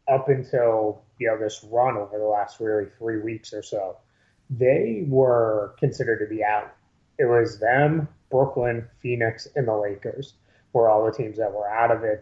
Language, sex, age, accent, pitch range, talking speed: English, male, 30-49, American, 110-130 Hz, 180 wpm